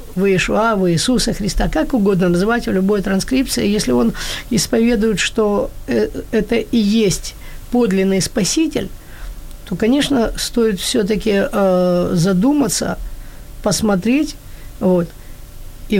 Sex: female